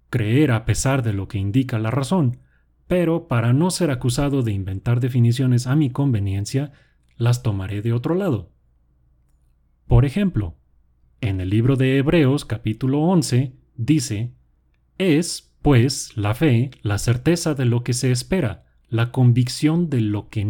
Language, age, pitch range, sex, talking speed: Spanish, 30-49, 95-135 Hz, male, 150 wpm